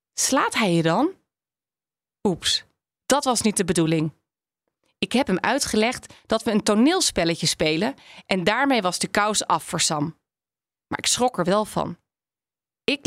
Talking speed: 155 wpm